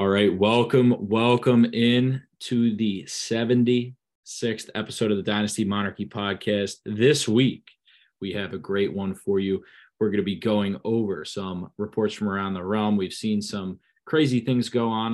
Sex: male